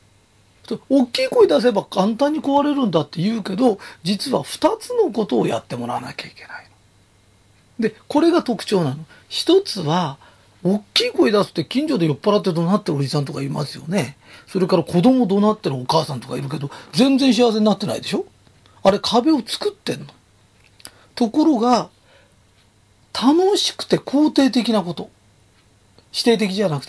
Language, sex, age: Japanese, male, 40-59